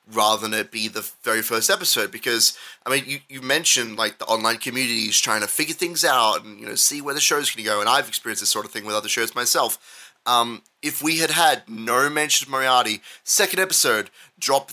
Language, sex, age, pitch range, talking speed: English, male, 30-49, 115-155 Hz, 230 wpm